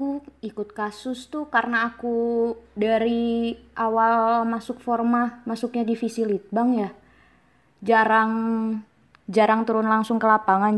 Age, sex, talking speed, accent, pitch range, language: 20-39, female, 105 wpm, native, 205-250 Hz, Indonesian